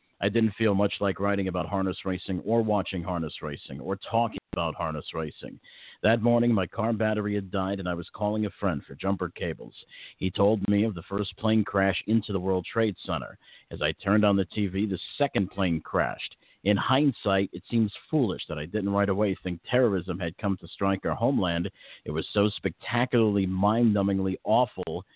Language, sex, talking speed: English, male, 195 wpm